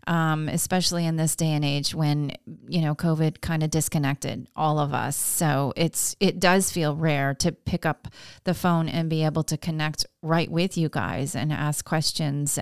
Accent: American